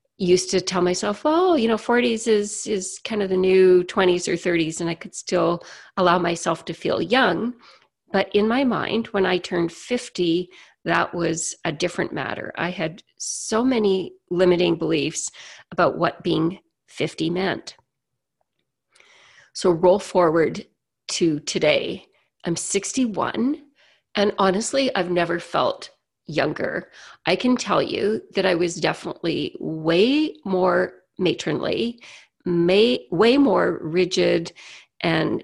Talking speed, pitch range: 130 wpm, 175-220 Hz